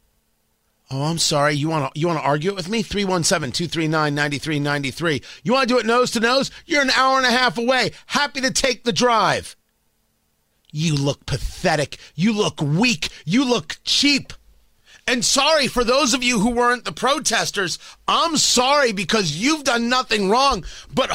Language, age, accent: English, 30-49, American